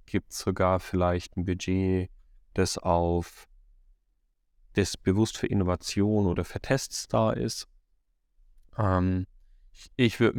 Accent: German